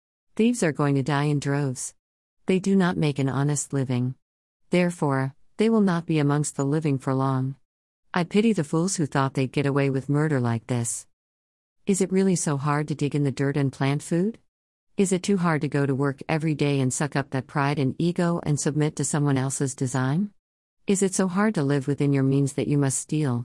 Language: English